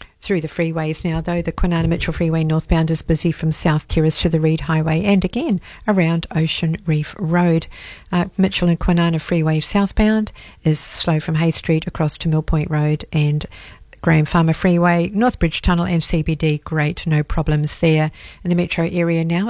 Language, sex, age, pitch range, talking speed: English, female, 50-69, 165-185 Hz, 175 wpm